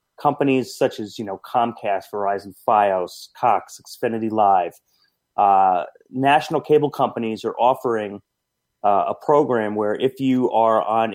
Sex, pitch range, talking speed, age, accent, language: male, 110-130 Hz, 135 wpm, 30-49, American, English